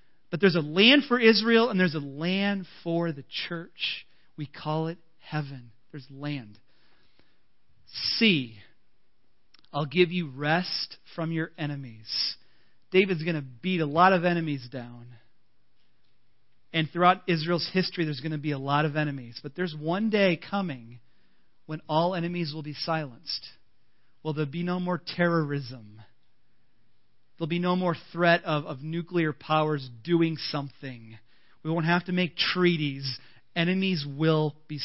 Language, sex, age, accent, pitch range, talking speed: English, male, 40-59, American, 135-170 Hz, 150 wpm